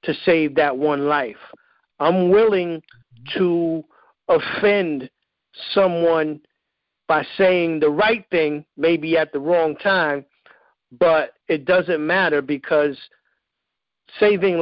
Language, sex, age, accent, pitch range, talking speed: English, male, 50-69, American, 145-180 Hz, 105 wpm